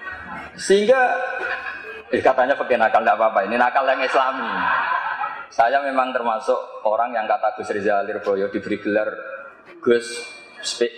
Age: 20-39